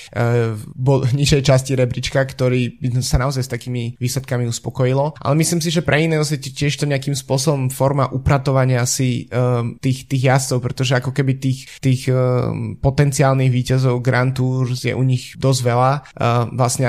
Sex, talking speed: male, 155 wpm